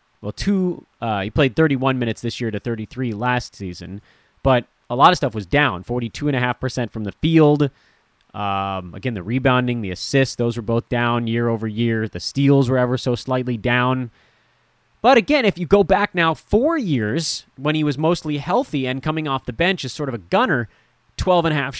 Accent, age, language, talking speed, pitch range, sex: American, 30-49, English, 190 wpm, 115-170 Hz, male